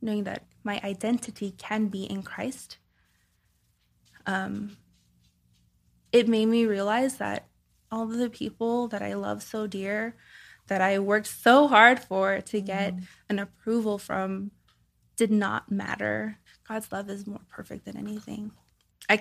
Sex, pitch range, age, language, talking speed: female, 185-215 Hz, 20-39, English, 140 wpm